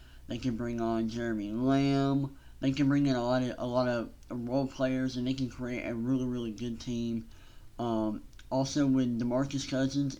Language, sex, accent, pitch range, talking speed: English, male, American, 115-135 Hz, 190 wpm